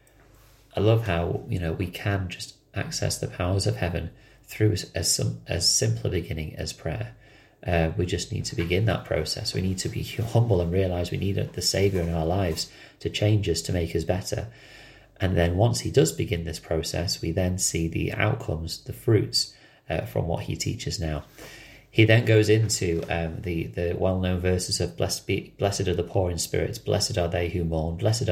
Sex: male